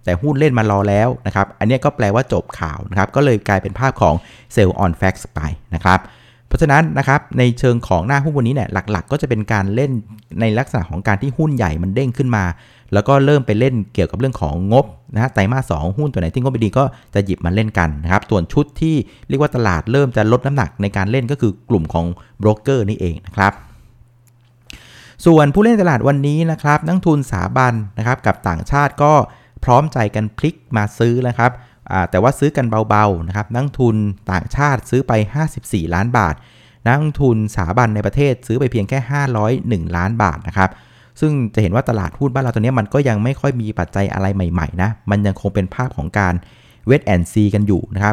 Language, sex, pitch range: Thai, male, 100-135 Hz